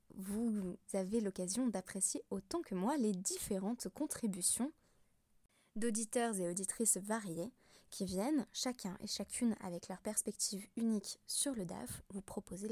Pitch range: 190-240 Hz